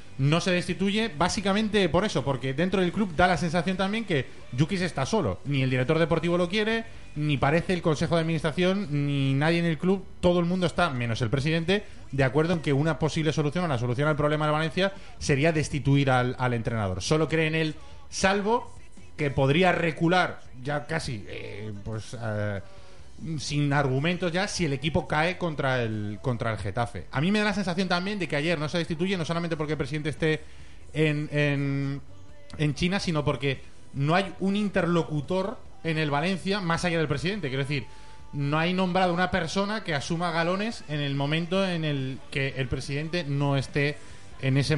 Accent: Spanish